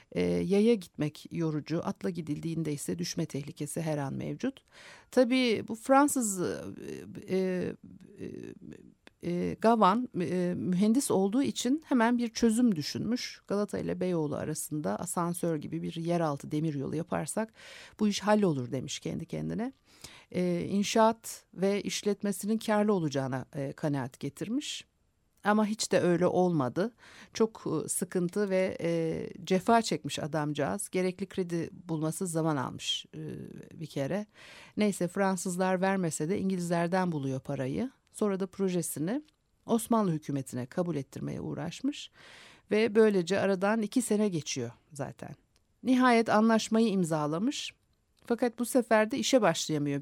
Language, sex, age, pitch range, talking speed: Turkish, female, 50-69, 155-220 Hz, 120 wpm